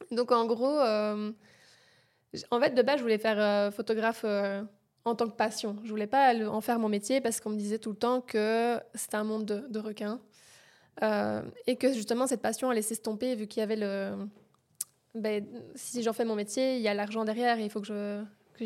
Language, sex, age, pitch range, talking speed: French, female, 20-39, 210-235 Hz, 225 wpm